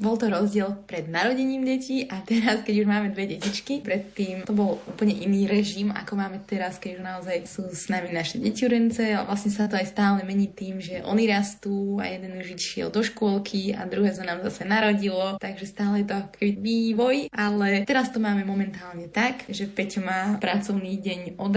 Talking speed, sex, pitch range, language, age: 195 wpm, female, 185-210 Hz, Slovak, 20-39